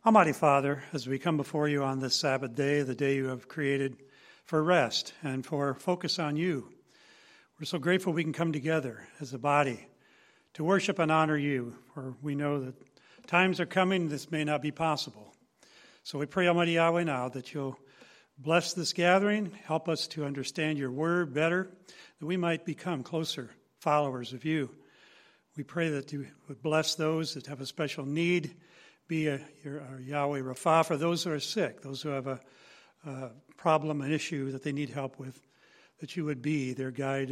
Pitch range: 135-175 Hz